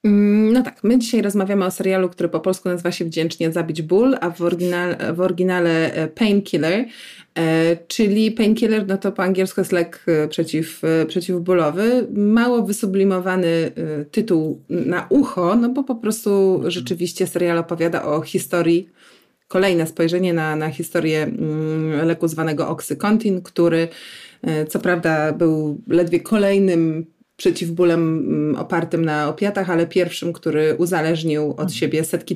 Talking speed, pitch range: 130 wpm, 160-195 Hz